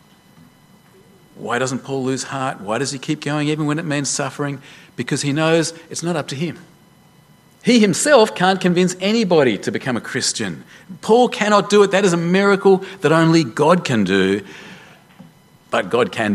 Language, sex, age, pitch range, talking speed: English, male, 40-59, 140-195 Hz, 175 wpm